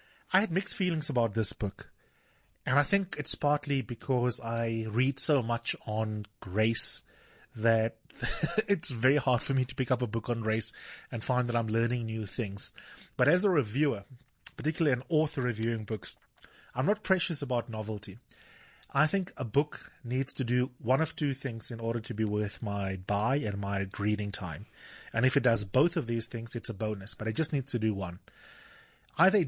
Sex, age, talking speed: male, 30-49, 195 wpm